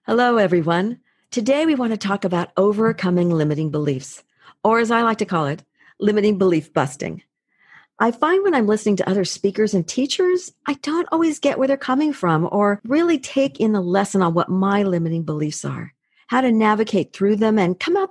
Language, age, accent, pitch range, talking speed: English, 50-69, American, 170-230 Hz, 195 wpm